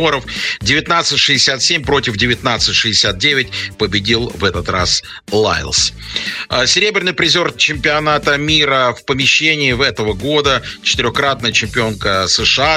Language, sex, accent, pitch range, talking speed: Russian, male, native, 100-140 Hz, 95 wpm